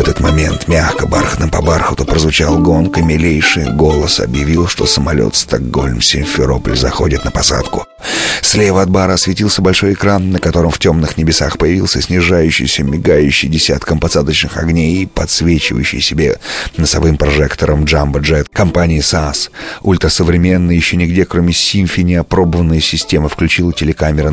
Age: 30-49